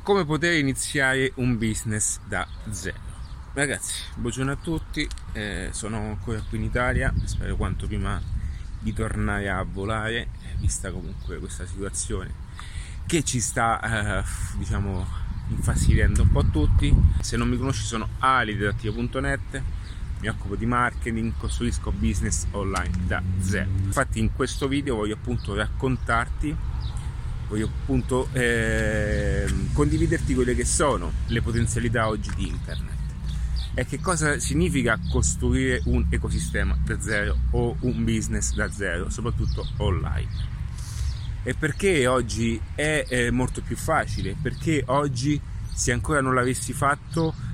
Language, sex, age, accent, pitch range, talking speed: Italian, male, 30-49, native, 95-125 Hz, 130 wpm